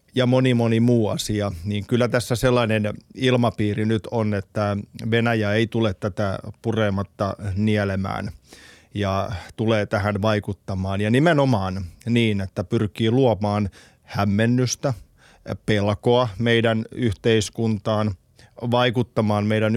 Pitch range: 100-120 Hz